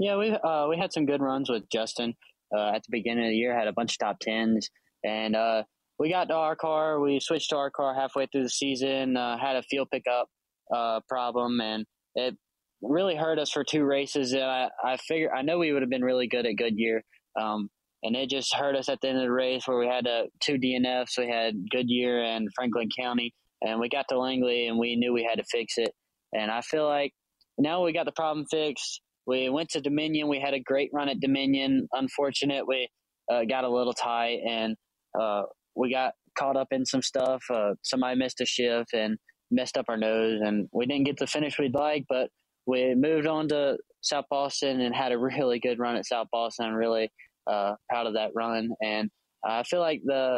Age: 20-39